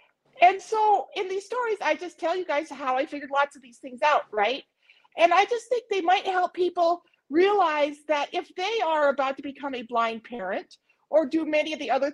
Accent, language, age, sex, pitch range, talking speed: American, English, 40-59, female, 260-365 Hz, 215 wpm